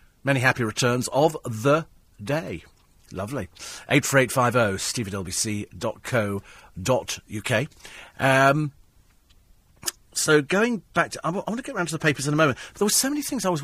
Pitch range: 120-175 Hz